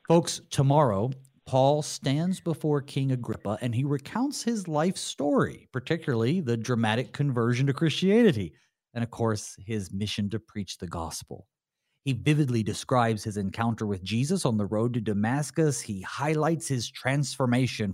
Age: 40-59